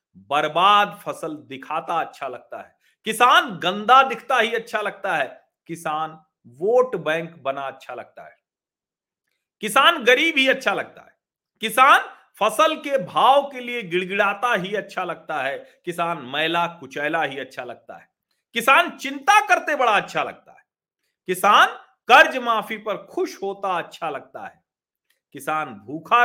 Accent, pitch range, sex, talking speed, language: native, 170-265 Hz, male, 140 wpm, Hindi